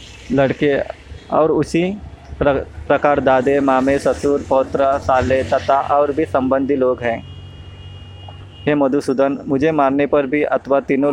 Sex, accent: male, native